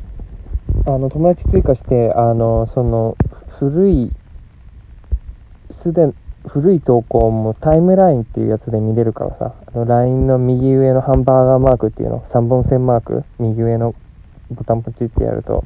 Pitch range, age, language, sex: 110-130 Hz, 20-39, Japanese, male